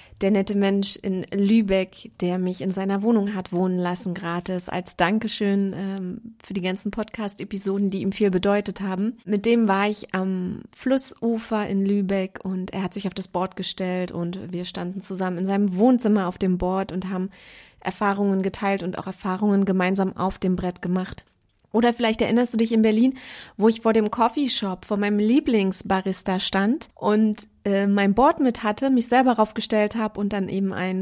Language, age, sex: German, 30-49, female